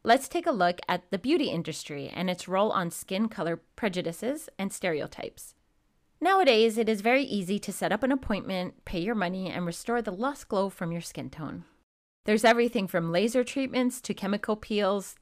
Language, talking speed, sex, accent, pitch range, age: English, 185 wpm, female, American, 170-225 Hz, 30-49